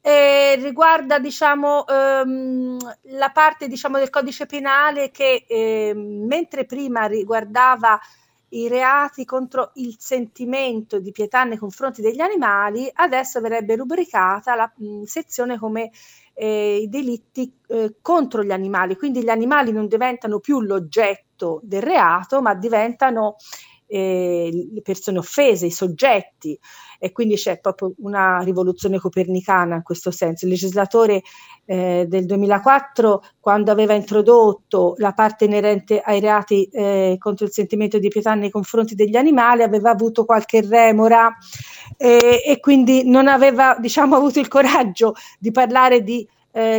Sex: female